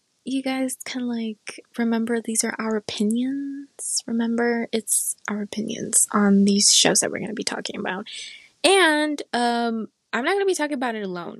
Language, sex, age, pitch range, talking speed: English, female, 20-39, 205-265 Hz, 180 wpm